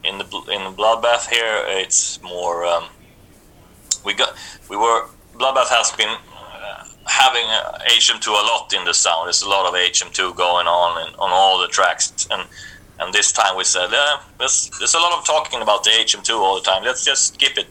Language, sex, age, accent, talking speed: English, male, 30-49, Swedish, 205 wpm